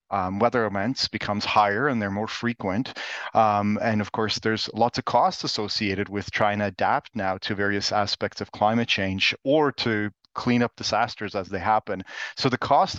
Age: 30-49